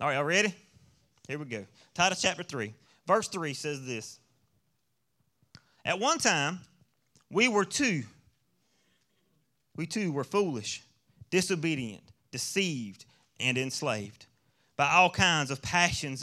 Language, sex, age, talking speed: English, male, 30-49, 120 wpm